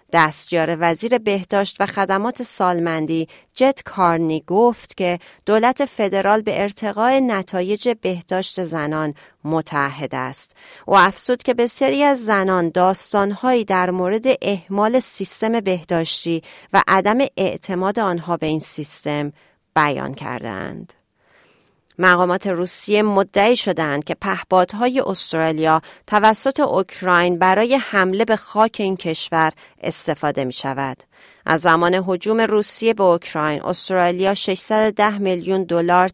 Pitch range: 160-210 Hz